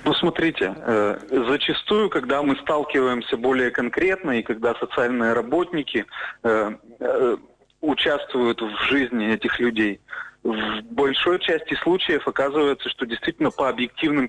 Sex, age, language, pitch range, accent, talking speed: male, 30-49, Russian, 120-165 Hz, native, 110 wpm